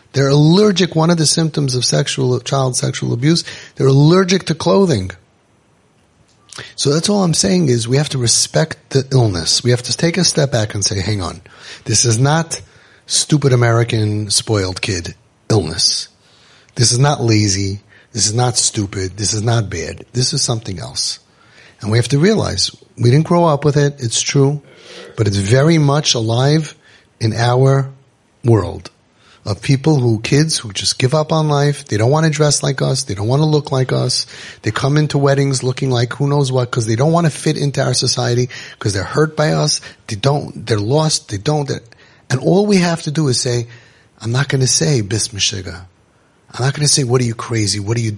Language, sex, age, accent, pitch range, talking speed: English, male, 30-49, American, 110-150 Hz, 200 wpm